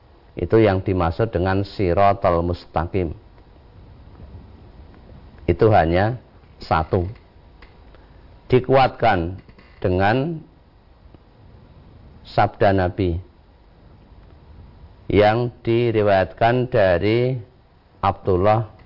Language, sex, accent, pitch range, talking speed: Indonesian, male, native, 85-110 Hz, 55 wpm